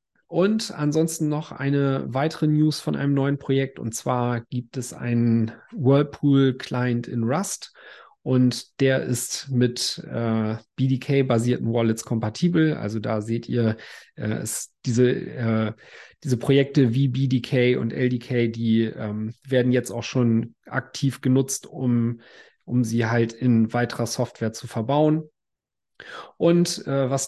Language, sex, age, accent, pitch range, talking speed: German, male, 40-59, German, 115-135 Hz, 130 wpm